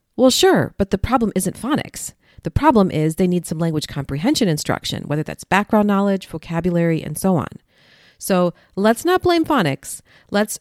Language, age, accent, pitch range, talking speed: English, 40-59, American, 160-215 Hz, 170 wpm